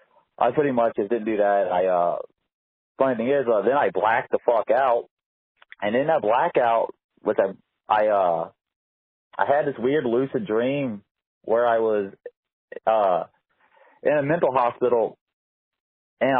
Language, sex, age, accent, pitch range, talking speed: English, male, 30-49, American, 100-130 Hz, 155 wpm